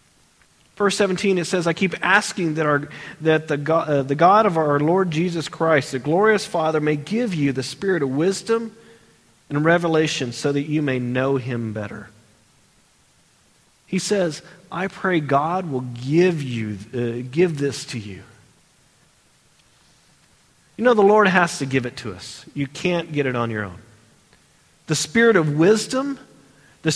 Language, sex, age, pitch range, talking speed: Slovak, male, 40-59, 150-220 Hz, 165 wpm